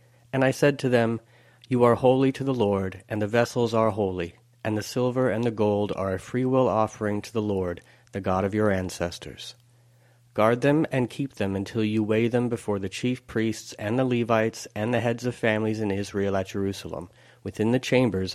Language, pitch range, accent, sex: English, 105-125 Hz, American, male